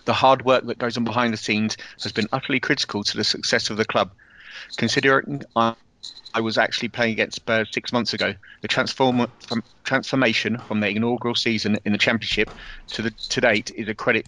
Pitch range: 110-120 Hz